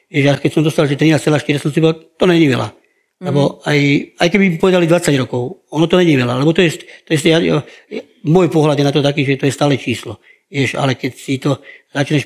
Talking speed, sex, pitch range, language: 215 wpm, male, 135-155 Hz, Slovak